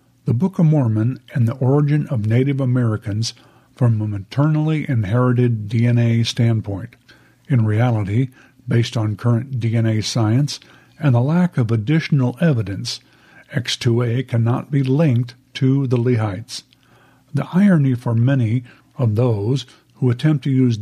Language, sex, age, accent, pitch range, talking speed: English, male, 50-69, American, 115-135 Hz, 135 wpm